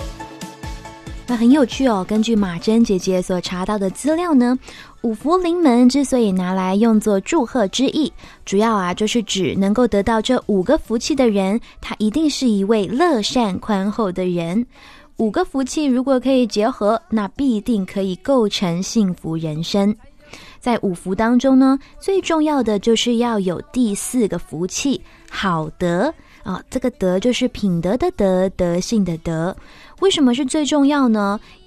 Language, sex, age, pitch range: Chinese, female, 20-39, 190-255 Hz